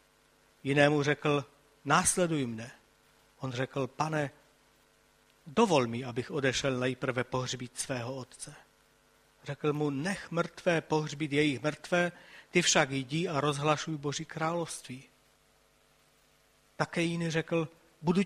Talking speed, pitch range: 110 wpm, 135-160 Hz